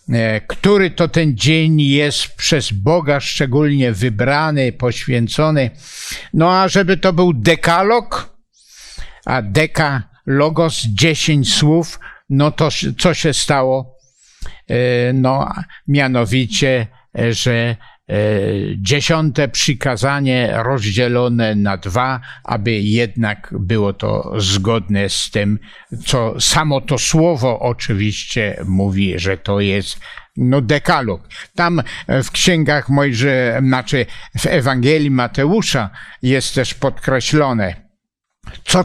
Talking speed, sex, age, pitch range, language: 95 wpm, male, 60-79, 115-155 Hz, Polish